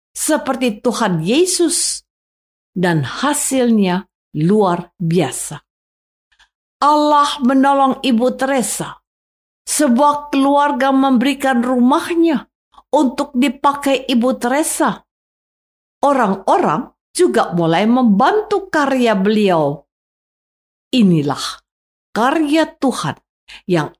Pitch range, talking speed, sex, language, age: 210-290 Hz, 75 wpm, female, Indonesian, 50-69